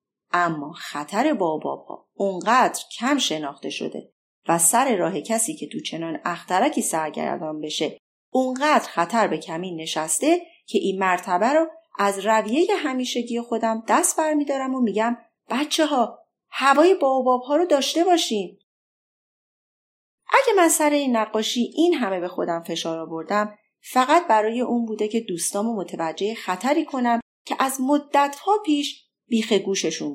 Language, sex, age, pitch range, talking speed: Persian, female, 30-49, 190-290 Hz, 145 wpm